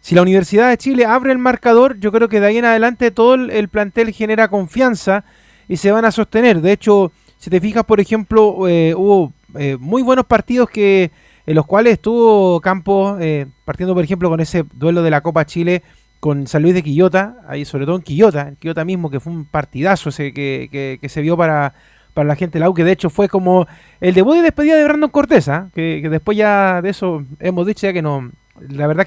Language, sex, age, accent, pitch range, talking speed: Spanish, male, 20-39, Argentinian, 170-215 Hz, 225 wpm